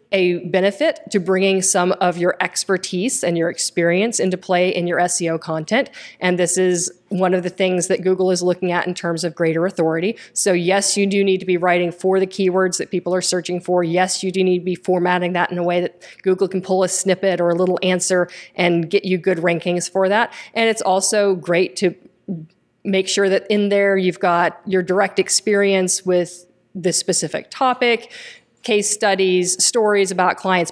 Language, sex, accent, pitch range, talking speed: English, female, American, 175-190 Hz, 200 wpm